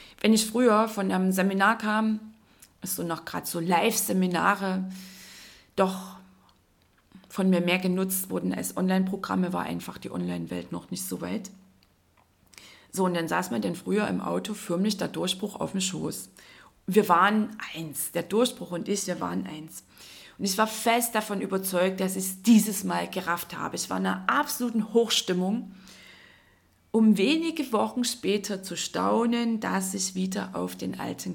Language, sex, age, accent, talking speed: German, female, 30-49, German, 160 wpm